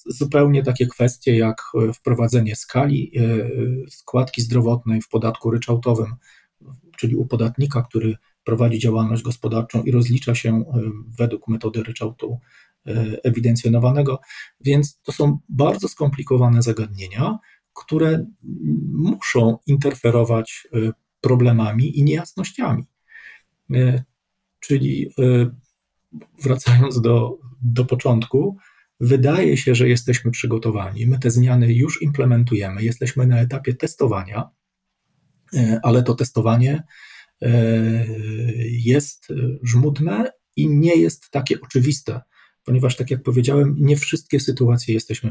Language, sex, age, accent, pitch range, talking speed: Polish, male, 40-59, native, 115-140 Hz, 100 wpm